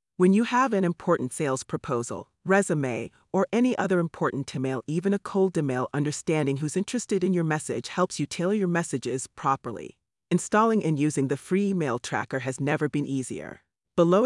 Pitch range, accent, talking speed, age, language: 135-190 Hz, American, 175 wpm, 40-59, English